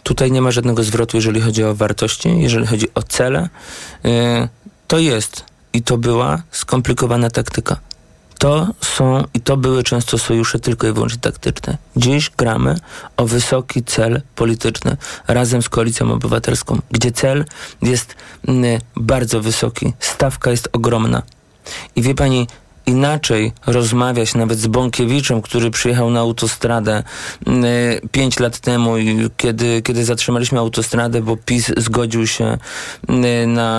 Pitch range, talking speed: 115-125 Hz, 130 wpm